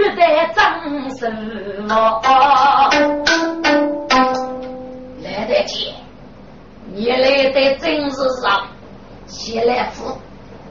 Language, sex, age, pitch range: Chinese, female, 30-49, 240-300 Hz